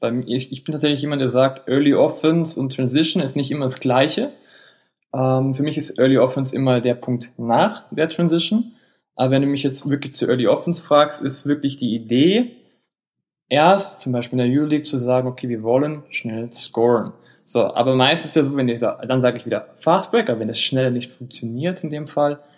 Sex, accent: male, German